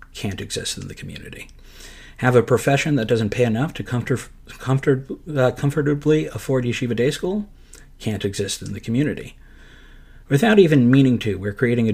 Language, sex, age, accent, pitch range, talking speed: English, male, 50-69, American, 105-135 Hz, 155 wpm